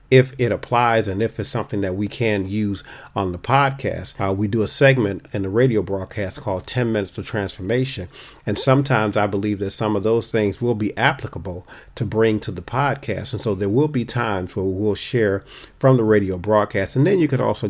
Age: 40-59